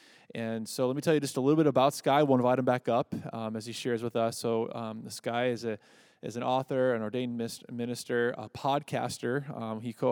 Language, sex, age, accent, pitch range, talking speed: English, male, 20-39, American, 115-135 Hz, 225 wpm